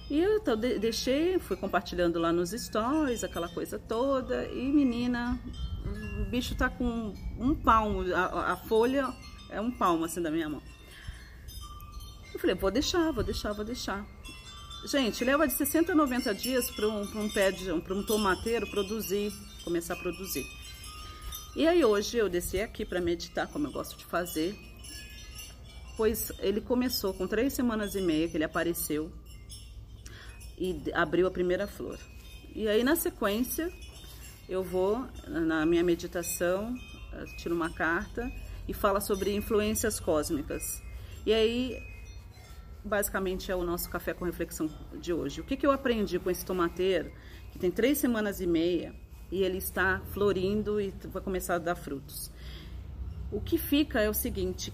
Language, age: Portuguese, 40-59